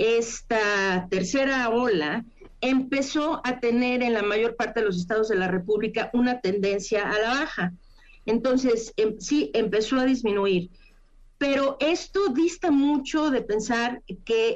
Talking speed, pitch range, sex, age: 140 wpm, 205-260 Hz, female, 40-59